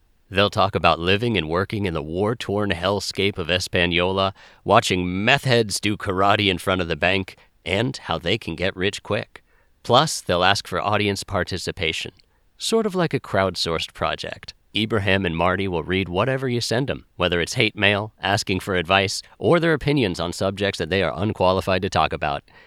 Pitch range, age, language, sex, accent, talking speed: 95-135 Hz, 40-59, English, male, American, 180 wpm